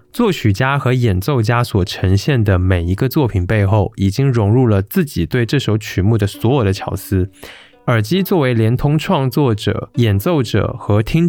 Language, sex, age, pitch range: Chinese, male, 20-39, 100-140 Hz